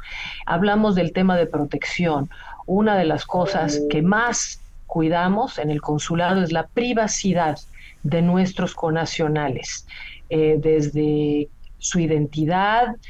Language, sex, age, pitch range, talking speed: English, female, 50-69, 155-205 Hz, 115 wpm